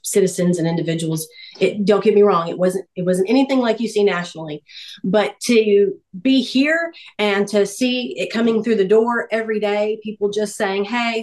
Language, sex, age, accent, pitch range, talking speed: English, female, 40-59, American, 190-220 Hz, 185 wpm